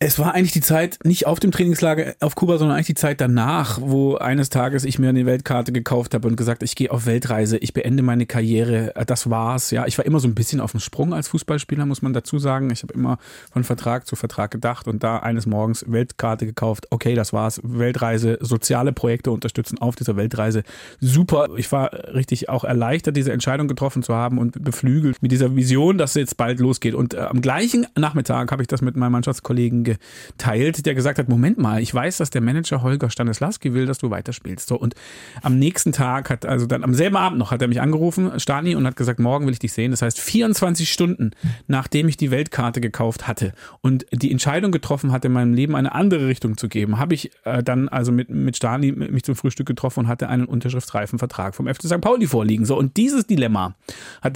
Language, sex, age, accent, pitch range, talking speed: German, male, 30-49, German, 120-140 Hz, 220 wpm